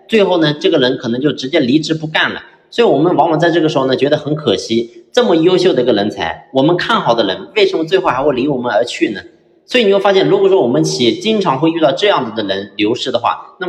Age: 30-49